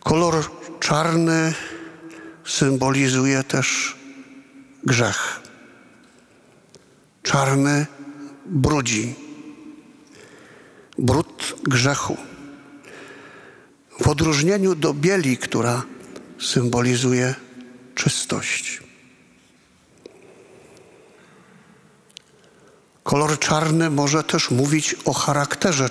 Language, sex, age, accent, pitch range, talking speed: Polish, male, 50-69, native, 130-160 Hz, 55 wpm